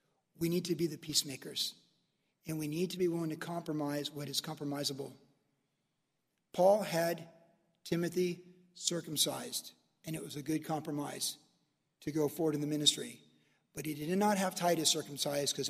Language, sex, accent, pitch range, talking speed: English, male, American, 150-180 Hz, 155 wpm